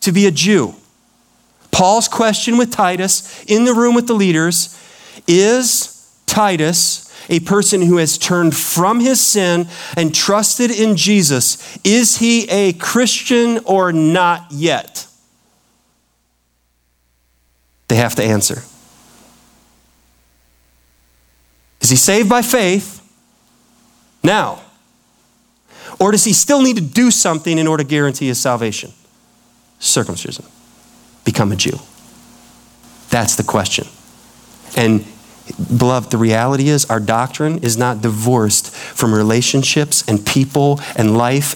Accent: American